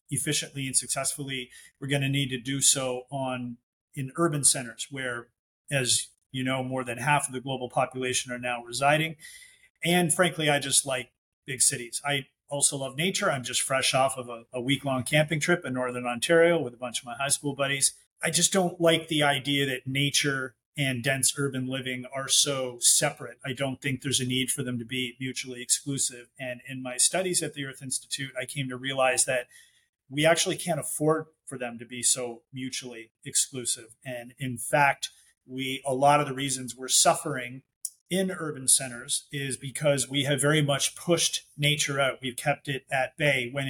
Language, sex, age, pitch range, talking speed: English, male, 30-49, 125-145 Hz, 190 wpm